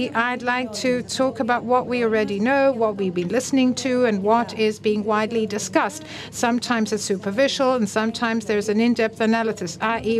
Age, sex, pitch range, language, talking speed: 60-79, female, 210-255 Hz, Greek, 175 wpm